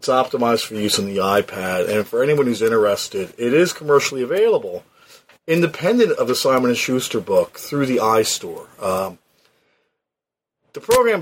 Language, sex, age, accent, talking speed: English, male, 40-59, American, 150 wpm